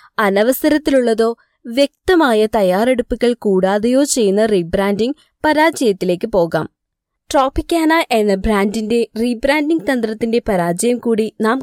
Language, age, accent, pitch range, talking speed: Malayalam, 20-39, native, 200-280 Hz, 85 wpm